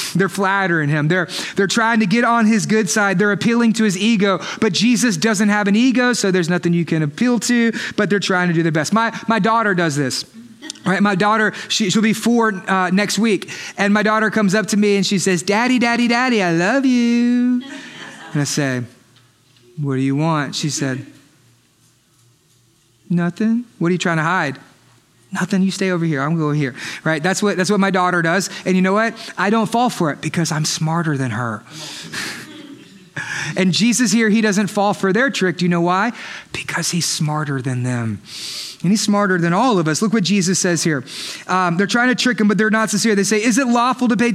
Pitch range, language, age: 180-240 Hz, English, 30-49